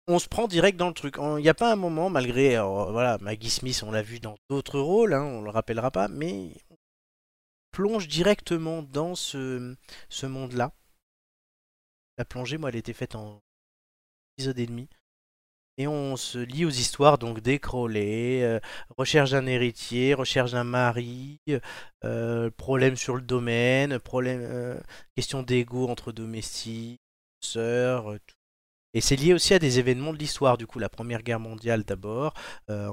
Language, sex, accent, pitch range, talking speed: French, male, French, 115-145 Hz, 170 wpm